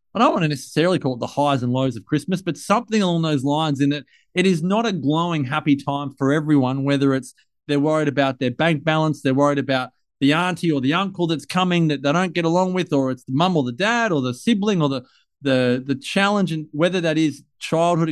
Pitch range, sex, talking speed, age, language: 135-165 Hz, male, 235 wpm, 30-49, English